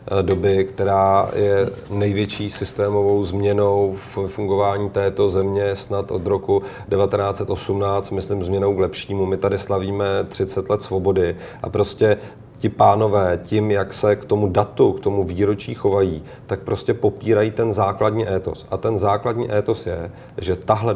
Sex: male